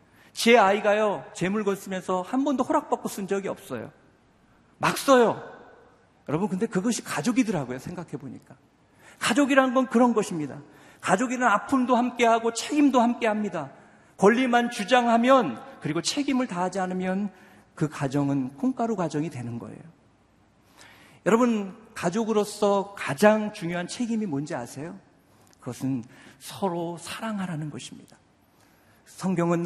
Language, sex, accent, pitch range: Korean, male, native, 165-240 Hz